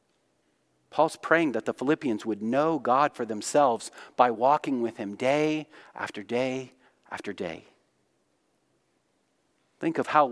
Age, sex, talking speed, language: 40-59, male, 130 wpm, English